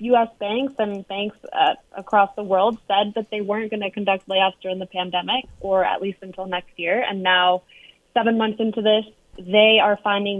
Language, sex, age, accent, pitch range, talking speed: English, female, 20-39, American, 185-220 Hz, 195 wpm